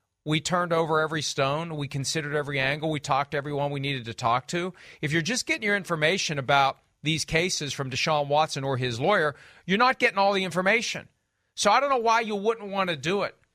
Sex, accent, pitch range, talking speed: male, American, 160-210 Hz, 220 wpm